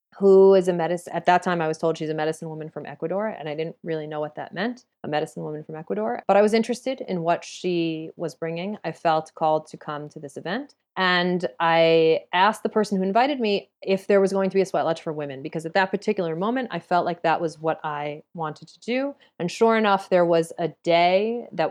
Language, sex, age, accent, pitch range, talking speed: English, female, 30-49, American, 165-205 Hz, 245 wpm